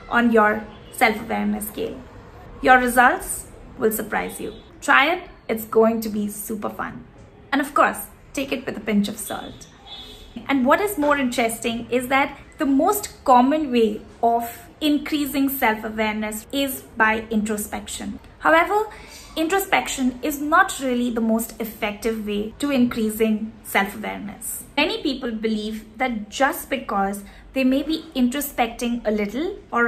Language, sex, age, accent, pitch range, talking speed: English, female, 20-39, Indian, 220-275 Hz, 140 wpm